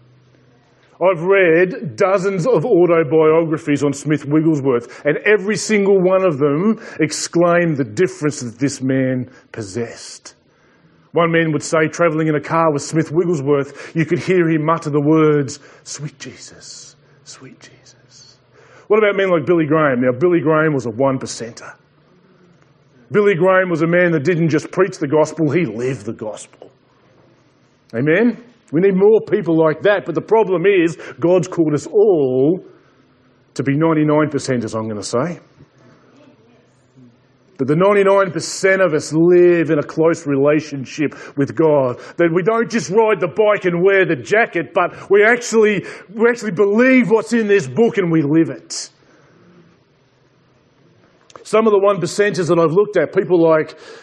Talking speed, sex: 155 wpm, male